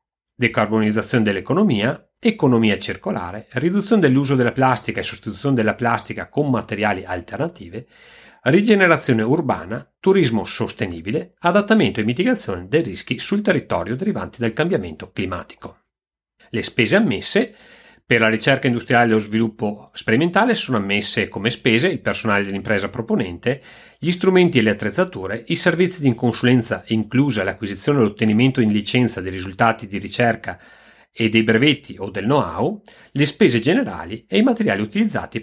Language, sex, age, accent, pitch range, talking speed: Italian, male, 40-59, native, 105-145 Hz, 140 wpm